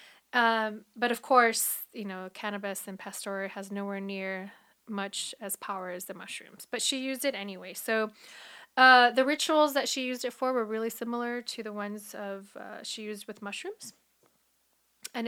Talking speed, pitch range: 175 wpm, 205-240 Hz